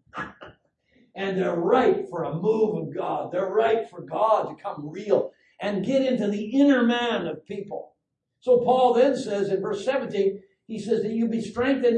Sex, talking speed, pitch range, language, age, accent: male, 180 wpm, 205-285 Hz, English, 60-79, American